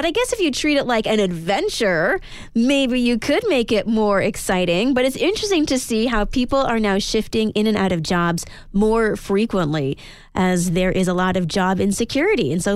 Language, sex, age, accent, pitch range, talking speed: English, female, 20-39, American, 185-230 Hz, 205 wpm